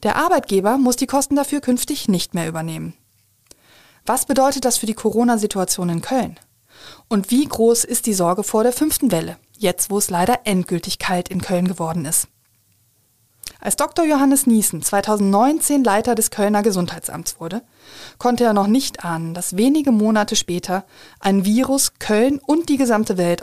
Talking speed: 165 wpm